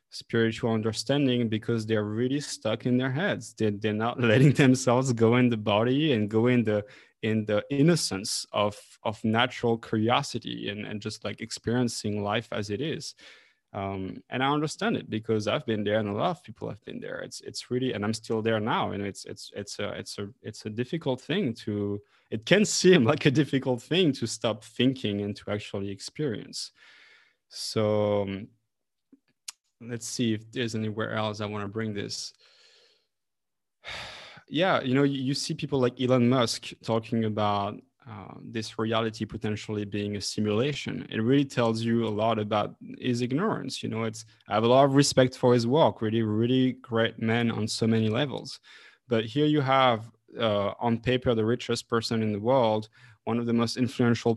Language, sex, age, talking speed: English, male, 20-39, 185 wpm